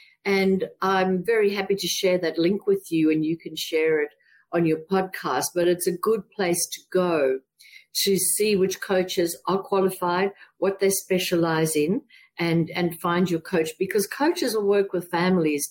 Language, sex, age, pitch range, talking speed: English, female, 50-69, 175-250 Hz, 175 wpm